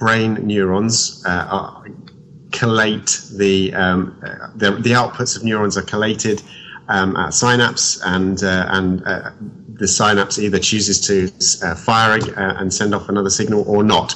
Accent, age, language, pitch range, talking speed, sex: British, 30-49, English, 95-115 Hz, 150 wpm, male